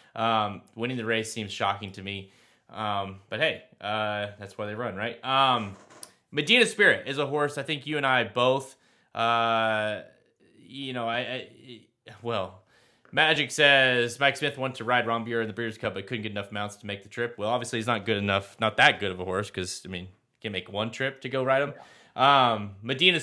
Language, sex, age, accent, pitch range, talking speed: English, male, 20-39, American, 105-135 Hz, 210 wpm